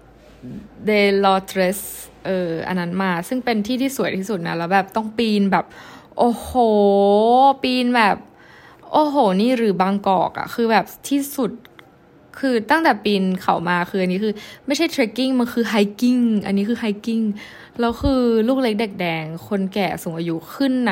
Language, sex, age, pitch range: Thai, female, 20-39, 190-250 Hz